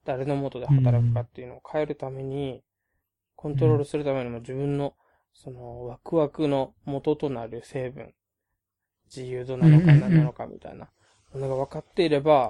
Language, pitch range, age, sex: Japanese, 125-150 Hz, 20-39, male